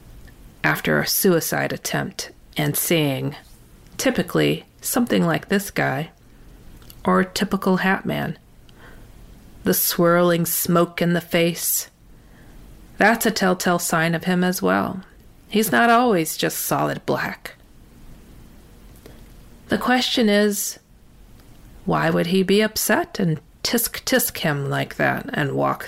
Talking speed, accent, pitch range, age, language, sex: 120 wpm, American, 165-215 Hz, 40-59, English, female